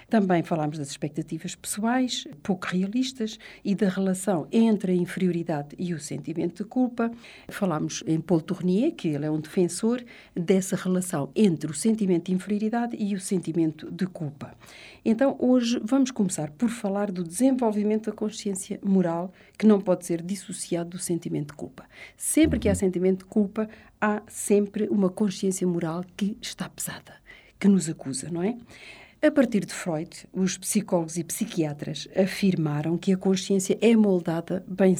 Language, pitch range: Portuguese, 170-220 Hz